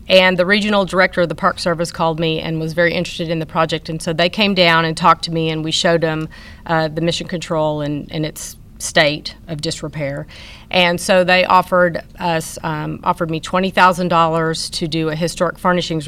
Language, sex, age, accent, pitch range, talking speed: English, female, 40-59, American, 160-180 Hz, 205 wpm